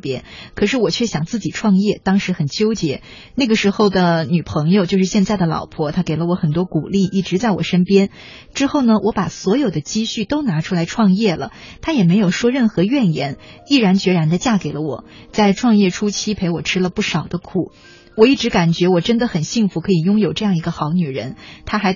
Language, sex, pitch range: Chinese, female, 175-225 Hz